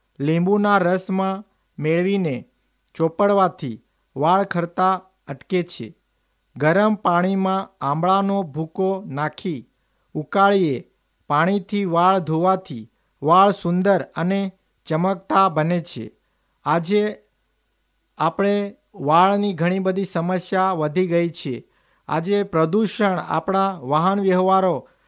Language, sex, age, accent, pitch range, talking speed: Gujarati, male, 50-69, native, 165-195 Hz, 90 wpm